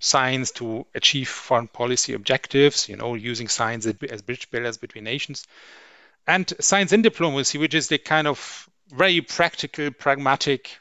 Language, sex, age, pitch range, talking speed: English, male, 40-59, 120-155 Hz, 150 wpm